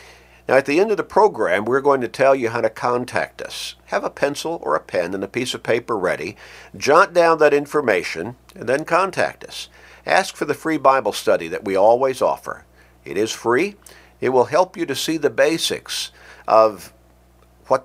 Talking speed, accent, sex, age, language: 200 wpm, American, male, 50-69, English